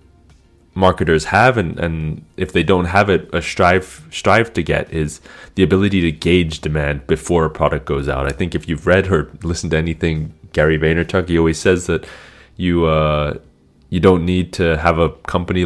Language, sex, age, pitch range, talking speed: English, male, 30-49, 75-95 Hz, 190 wpm